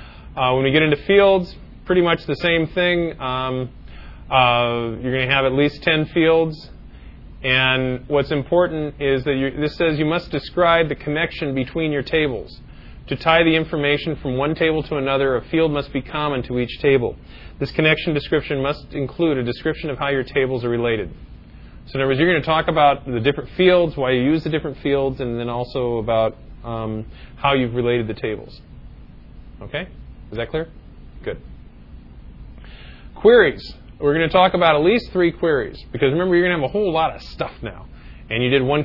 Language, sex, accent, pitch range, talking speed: English, male, American, 125-155 Hz, 190 wpm